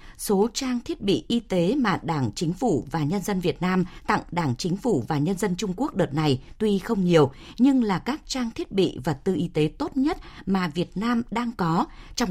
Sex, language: female, Vietnamese